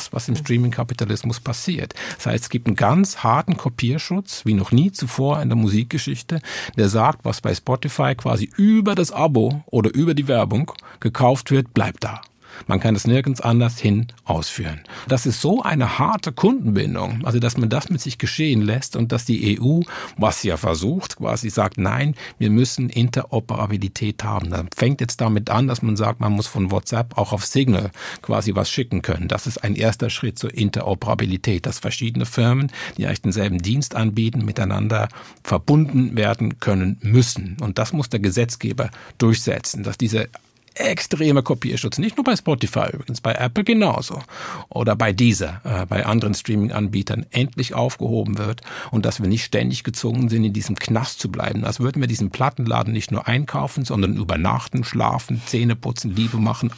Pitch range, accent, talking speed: 105-135 Hz, German, 175 wpm